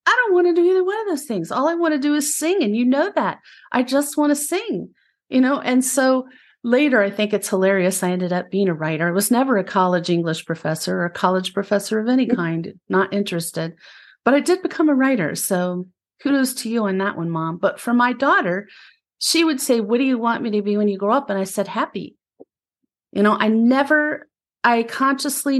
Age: 40-59